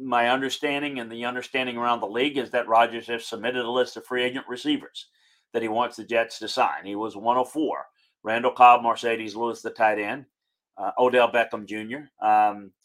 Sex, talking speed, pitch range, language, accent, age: male, 195 wpm, 105-130 Hz, English, American, 40-59